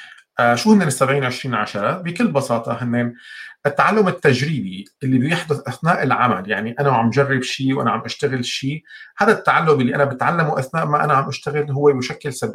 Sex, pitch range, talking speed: male, 120-145 Hz, 165 wpm